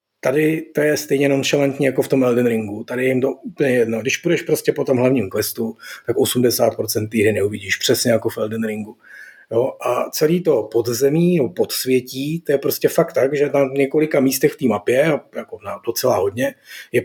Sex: male